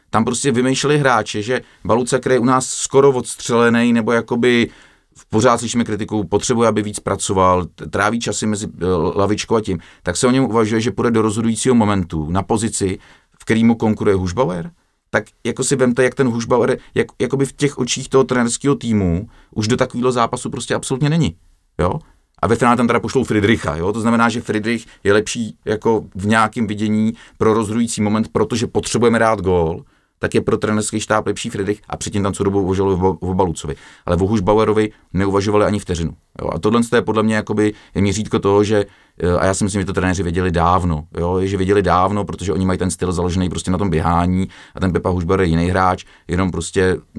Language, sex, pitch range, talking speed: Czech, male, 90-115 Hz, 195 wpm